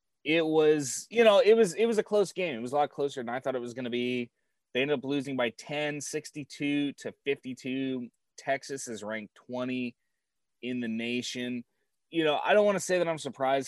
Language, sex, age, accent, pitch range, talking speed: English, male, 20-39, American, 120-150 Hz, 220 wpm